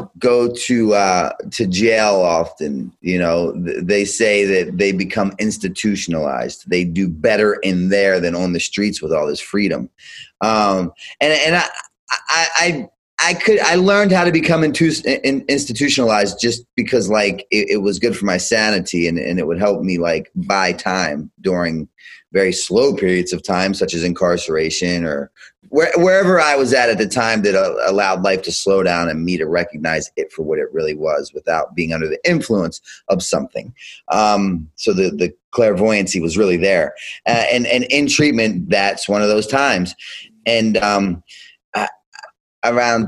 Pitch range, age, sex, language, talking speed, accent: 95-125 Hz, 30-49, male, English, 175 wpm, American